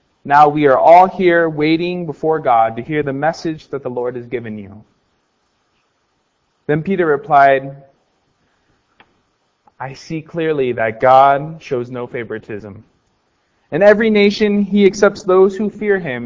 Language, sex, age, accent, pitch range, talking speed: English, male, 20-39, American, 135-190 Hz, 140 wpm